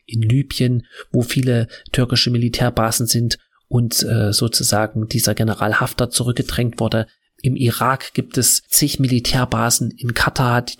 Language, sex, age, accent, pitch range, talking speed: German, male, 30-49, German, 115-130 Hz, 135 wpm